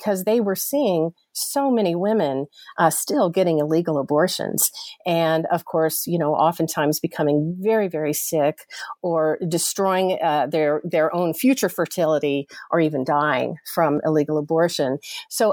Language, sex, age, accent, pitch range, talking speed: English, female, 50-69, American, 155-195 Hz, 145 wpm